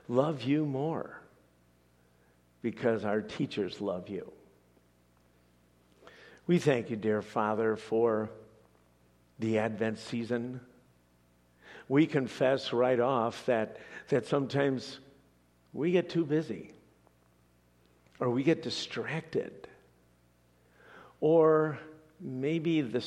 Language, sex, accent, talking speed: English, male, American, 90 wpm